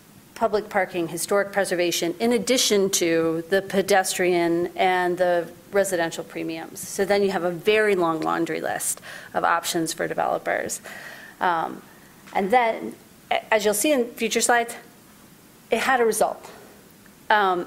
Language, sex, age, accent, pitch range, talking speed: English, female, 30-49, American, 175-215 Hz, 135 wpm